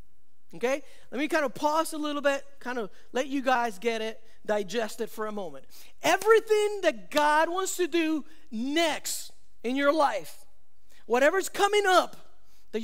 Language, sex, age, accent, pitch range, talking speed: English, male, 40-59, American, 235-330 Hz, 160 wpm